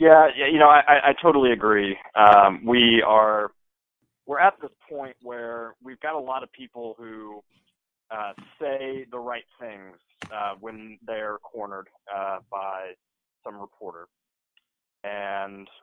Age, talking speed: 20-39, 140 wpm